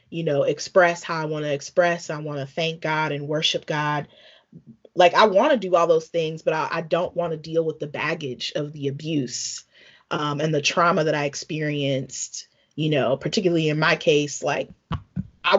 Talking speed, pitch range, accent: 200 wpm, 150-180 Hz, American